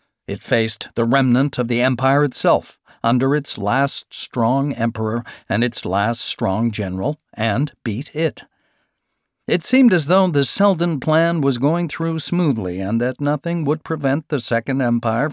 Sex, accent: male, American